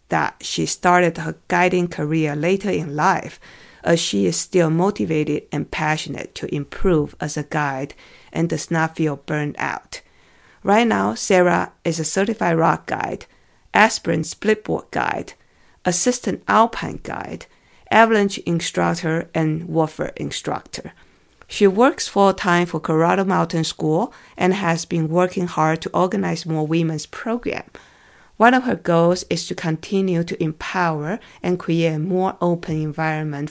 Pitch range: 155-185 Hz